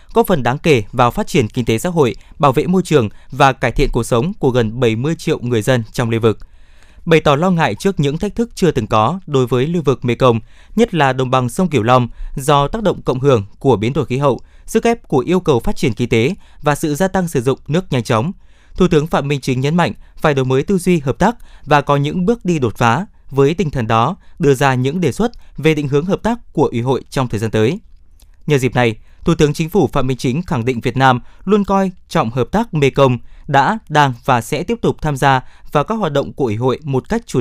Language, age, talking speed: Vietnamese, 20-39, 255 wpm